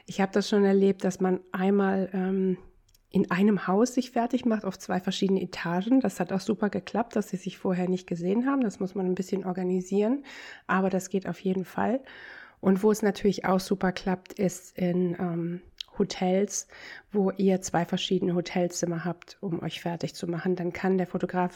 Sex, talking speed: female, 190 wpm